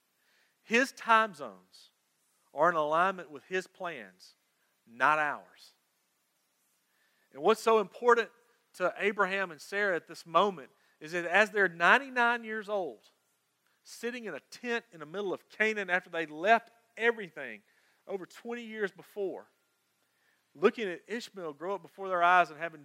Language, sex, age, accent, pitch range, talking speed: English, male, 40-59, American, 140-195 Hz, 145 wpm